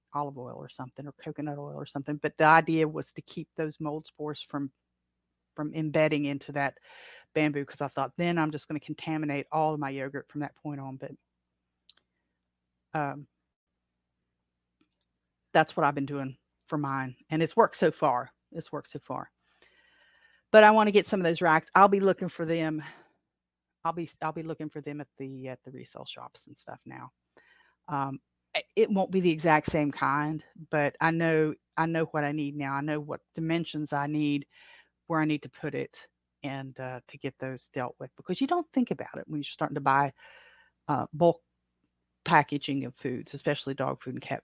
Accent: American